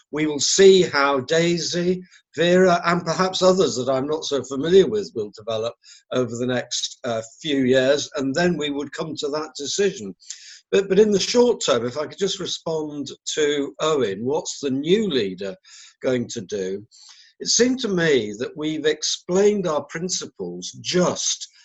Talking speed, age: 170 wpm, 50-69